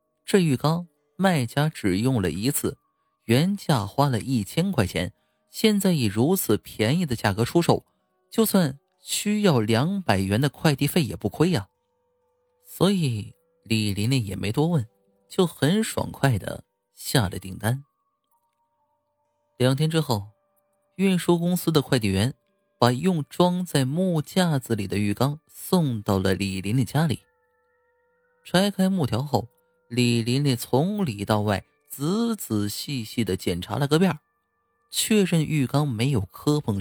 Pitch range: 110-185 Hz